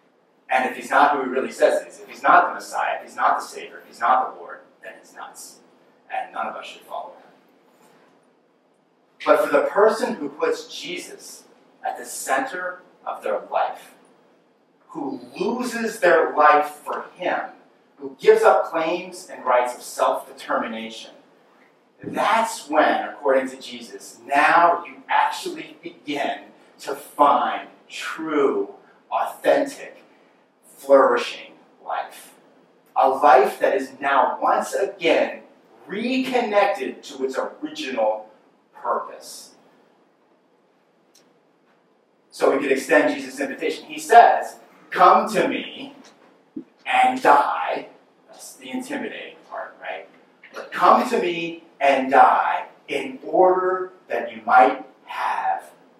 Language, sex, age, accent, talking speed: English, male, 40-59, American, 130 wpm